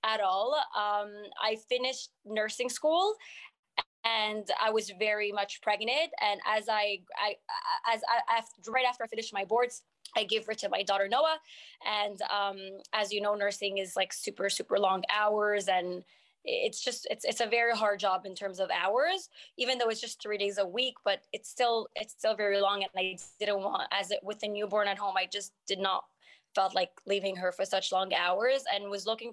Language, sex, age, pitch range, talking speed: English, female, 20-39, 200-245 Hz, 200 wpm